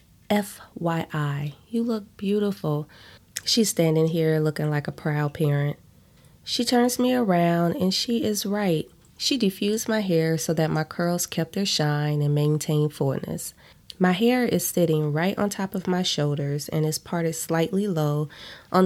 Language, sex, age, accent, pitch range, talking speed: English, female, 20-39, American, 150-200 Hz, 160 wpm